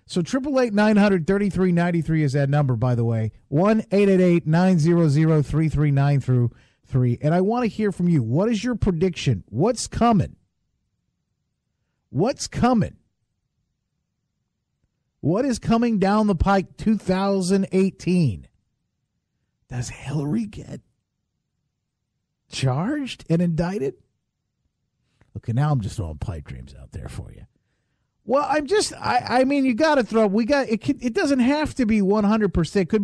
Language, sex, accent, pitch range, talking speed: English, male, American, 135-225 Hz, 130 wpm